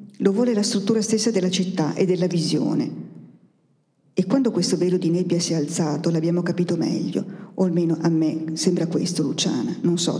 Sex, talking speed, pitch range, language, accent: female, 180 wpm, 170-215 Hz, Italian, native